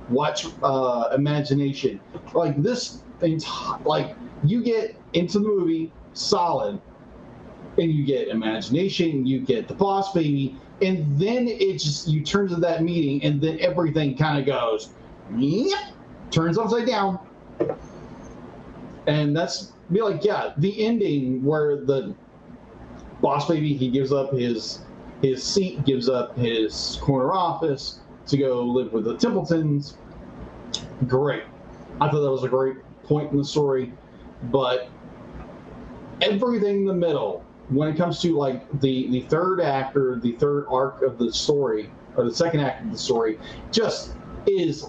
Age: 30-49